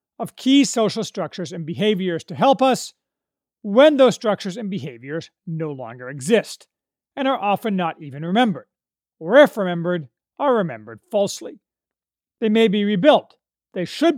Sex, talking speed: male, 150 wpm